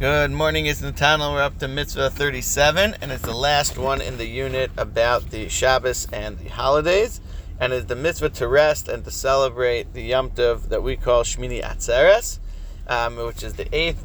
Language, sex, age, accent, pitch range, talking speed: English, male, 40-59, American, 115-140 Hz, 195 wpm